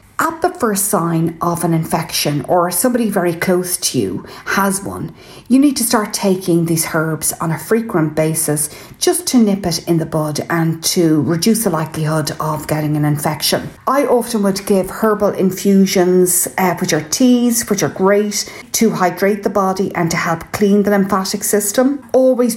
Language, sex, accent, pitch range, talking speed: English, female, Irish, 165-215 Hz, 180 wpm